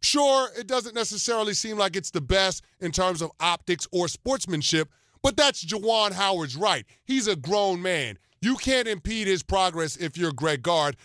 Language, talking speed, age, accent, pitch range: English, 180 wpm, 30-49, American, 155-190 Hz